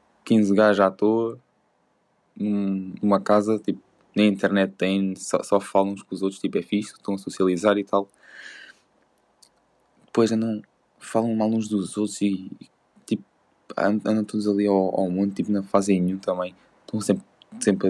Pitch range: 95-110 Hz